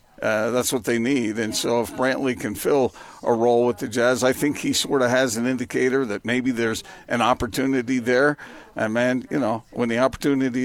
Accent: American